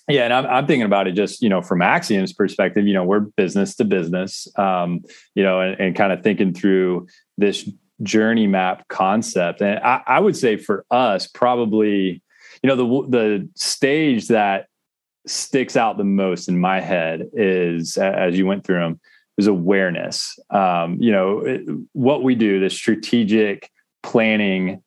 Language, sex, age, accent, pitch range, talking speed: English, male, 20-39, American, 95-115 Hz, 170 wpm